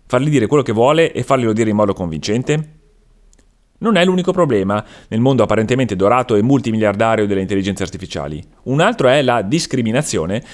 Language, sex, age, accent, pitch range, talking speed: Italian, male, 30-49, native, 95-135 Hz, 165 wpm